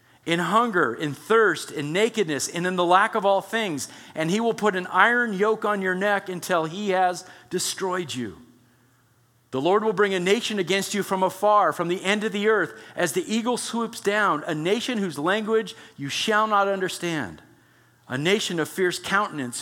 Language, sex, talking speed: English, male, 190 wpm